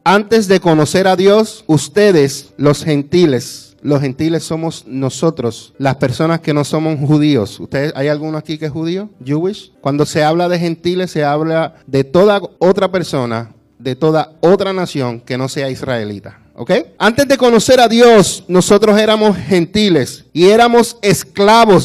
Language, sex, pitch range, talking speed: Spanish, male, 135-190 Hz, 155 wpm